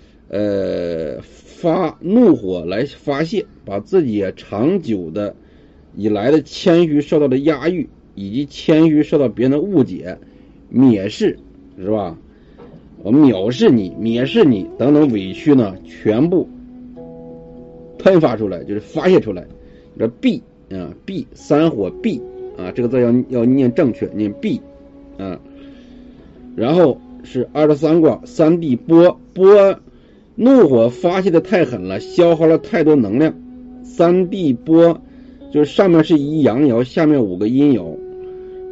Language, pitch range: Chinese, 120-180 Hz